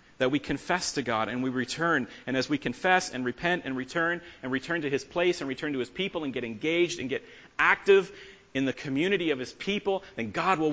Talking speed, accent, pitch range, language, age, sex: 230 wpm, American, 110-150 Hz, English, 40-59, male